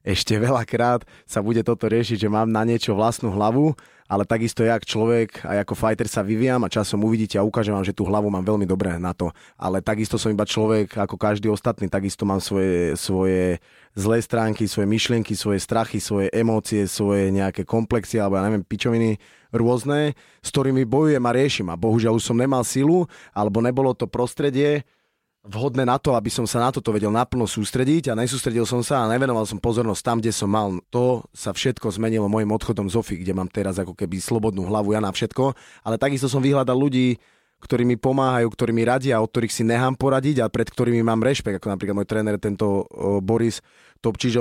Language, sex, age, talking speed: Slovak, male, 20-39, 200 wpm